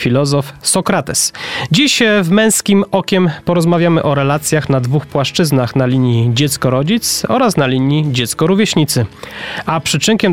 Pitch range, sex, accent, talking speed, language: 135-175 Hz, male, native, 120 wpm, Polish